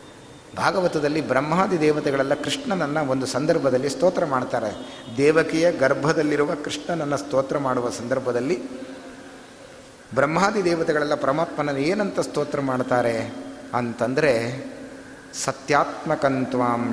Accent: native